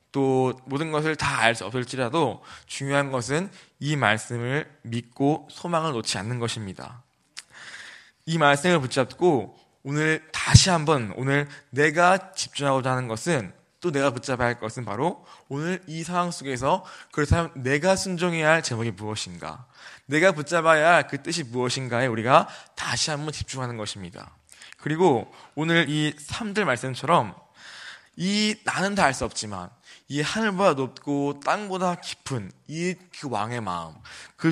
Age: 20-39